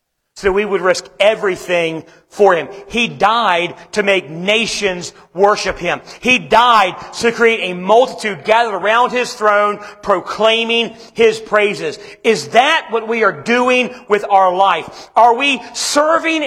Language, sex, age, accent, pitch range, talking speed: English, male, 40-59, American, 180-235 Hz, 140 wpm